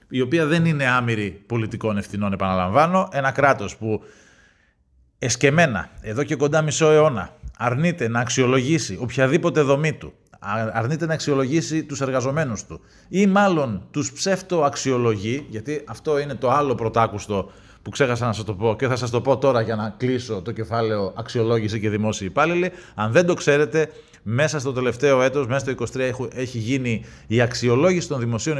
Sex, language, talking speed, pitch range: male, Greek, 165 wpm, 110-150 Hz